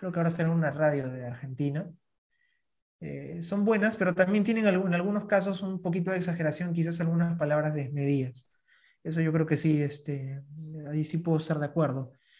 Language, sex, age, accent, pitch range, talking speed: Spanish, male, 20-39, Argentinian, 145-175 Hz, 180 wpm